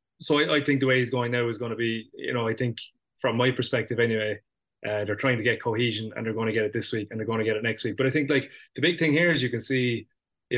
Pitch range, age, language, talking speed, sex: 110-125 Hz, 20-39, English, 320 wpm, male